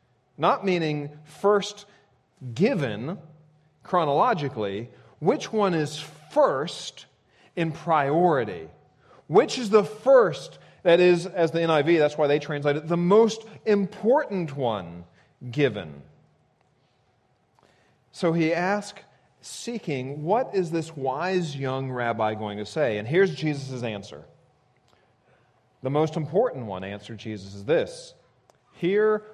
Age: 40-59